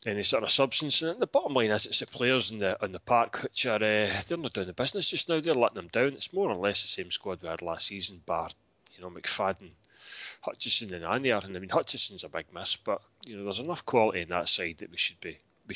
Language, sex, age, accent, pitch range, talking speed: English, male, 30-49, British, 90-110 Hz, 270 wpm